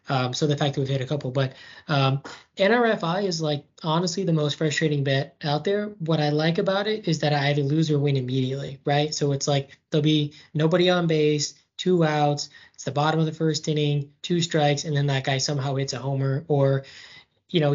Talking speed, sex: 220 wpm, male